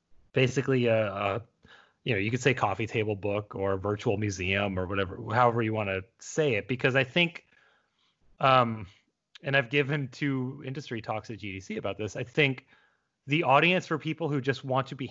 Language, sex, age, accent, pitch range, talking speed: English, male, 30-49, American, 105-145 Hz, 190 wpm